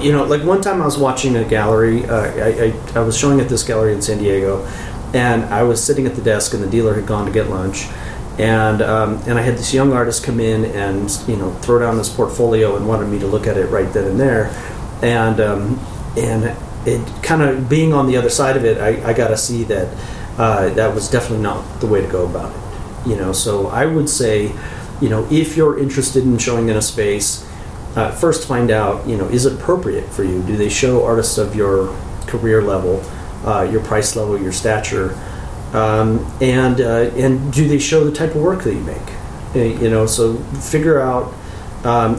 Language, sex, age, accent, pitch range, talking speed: English, male, 40-59, American, 105-130 Hz, 220 wpm